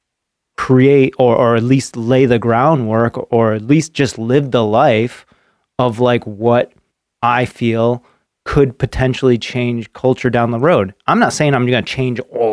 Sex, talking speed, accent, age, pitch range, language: male, 165 wpm, American, 30-49, 110-140 Hz, English